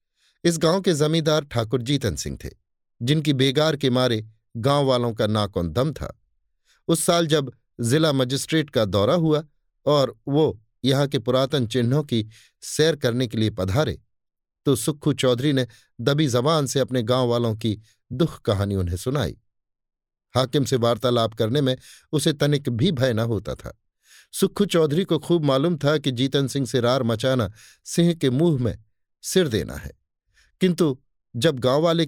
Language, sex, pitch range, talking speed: Hindi, male, 115-150 Hz, 165 wpm